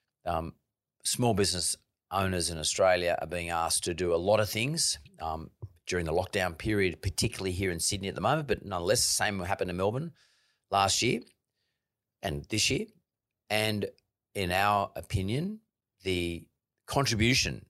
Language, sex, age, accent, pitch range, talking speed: English, male, 40-59, Australian, 90-115 Hz, 155 wpm